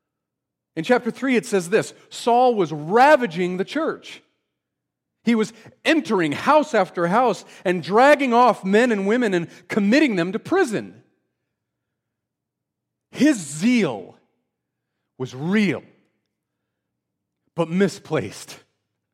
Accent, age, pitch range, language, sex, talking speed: American, 40-59, 135-215 Hz, English, male, 105 wpm